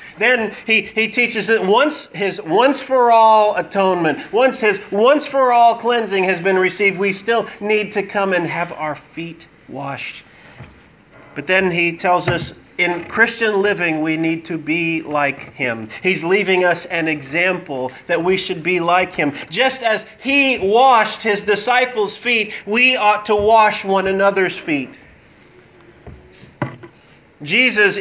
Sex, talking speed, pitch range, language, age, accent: male, 140 wpm, 175-235 Hz, English, 40-59, American